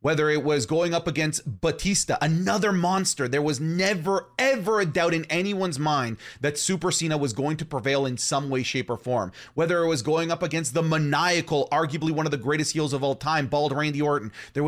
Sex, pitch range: male, 140-175 Hz